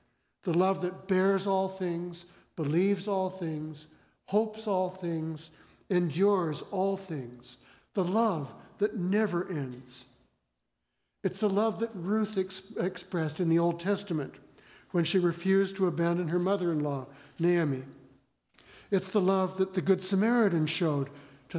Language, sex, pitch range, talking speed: English, male, 150-195 Hz, 130 wpm